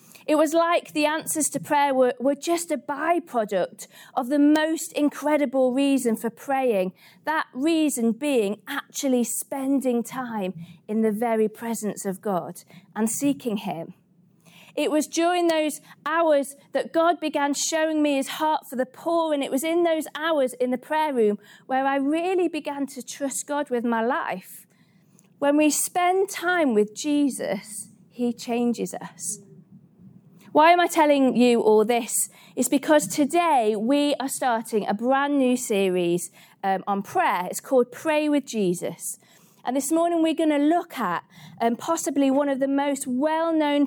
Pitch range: 210-300 Hz